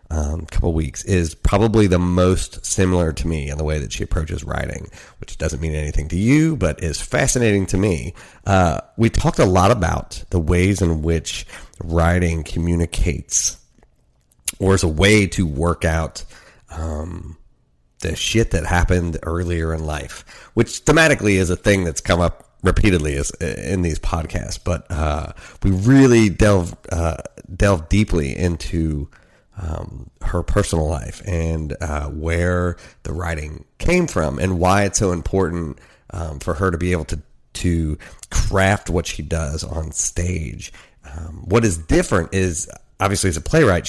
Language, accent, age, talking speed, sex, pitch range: English, American, 30-49, 155 wpm, male, 80-95 Hz